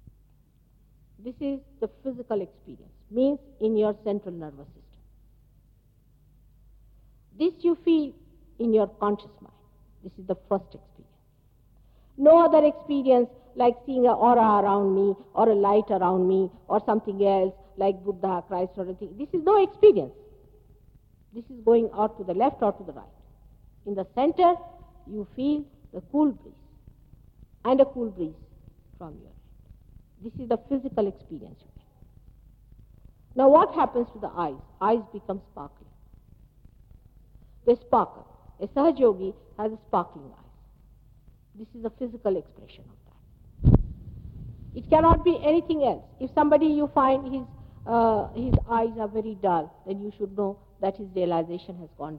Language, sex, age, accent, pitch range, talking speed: English, female, 50-69, Indian, 185-260 Hz, 150 wpm